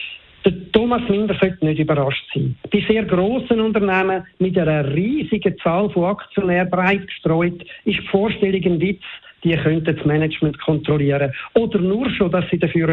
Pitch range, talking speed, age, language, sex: 155-195 Hz, 160 wpm, 50-69, German, male